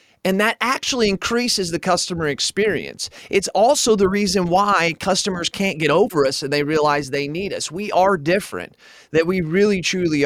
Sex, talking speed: male, 175 wpm